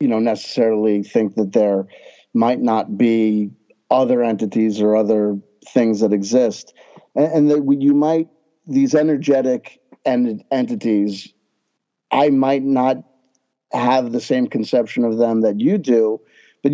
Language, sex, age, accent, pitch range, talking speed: English, male, 50-69, American, 115-145 Hz, 140 wpm